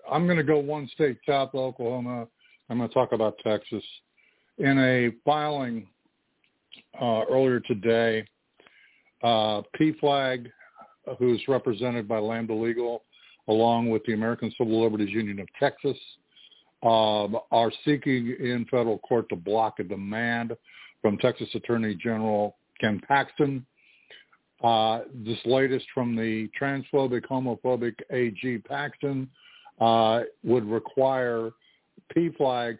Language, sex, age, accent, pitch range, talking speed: English, male, 60-79, American, 110-130 Hz, 120 wpm